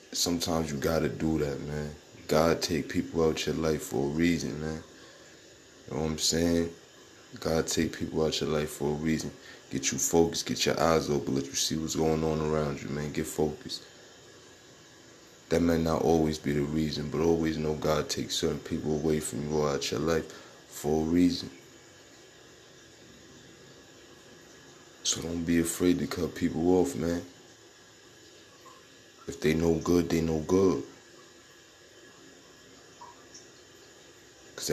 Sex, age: male, 20-39